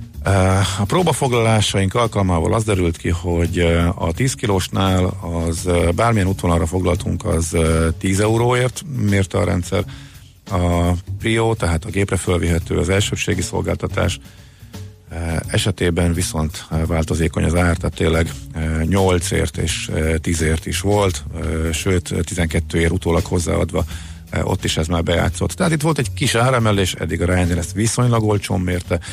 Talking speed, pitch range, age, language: 130 wpm, 85-105 Hz, 50-69, Hungarian